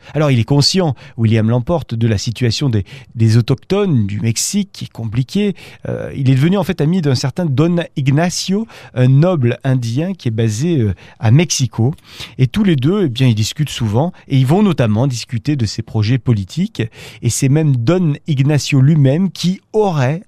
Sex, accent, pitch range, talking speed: male, French, 120-170 Hz, 185 wpm